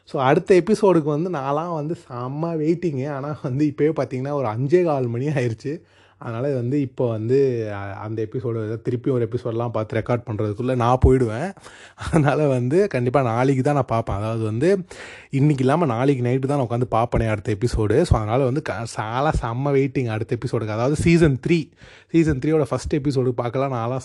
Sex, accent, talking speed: male, native, 170 wpm